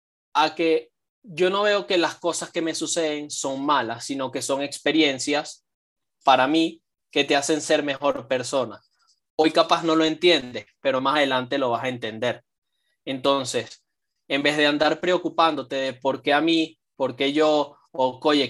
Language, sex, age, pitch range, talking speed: English, male, 20-39, 140-165 Hz, 175 wpm